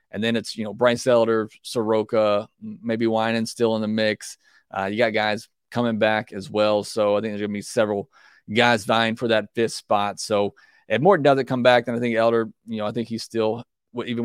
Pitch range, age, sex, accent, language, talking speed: 105-120 Hz, 30-49, male, American, English, 225 wpm